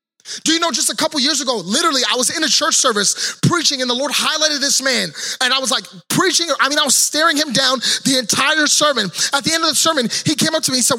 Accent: American